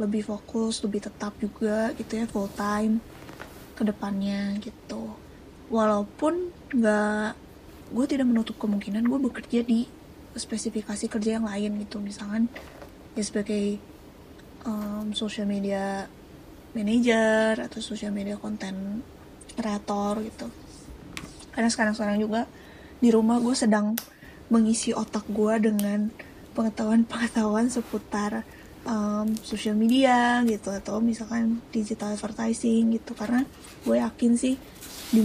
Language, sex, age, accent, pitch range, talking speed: Indonesian, female, 20-39, native, 210-230 Hz, 110 wpm